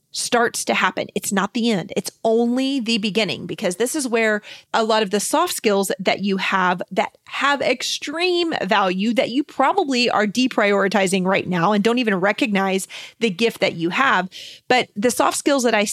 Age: 30-49